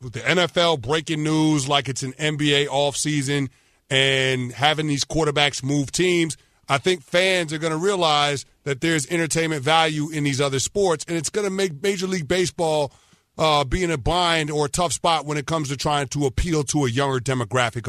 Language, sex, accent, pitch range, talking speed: English, male, American, 140-170 Hz, 200 wpm